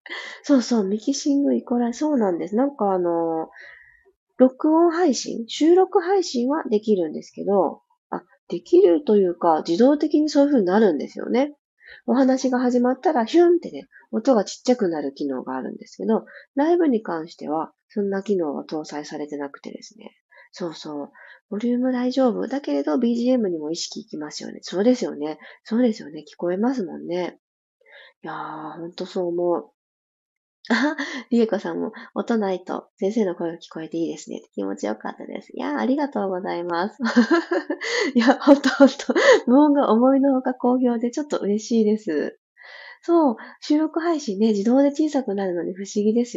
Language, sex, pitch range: Japanese, female, 185-280 Hz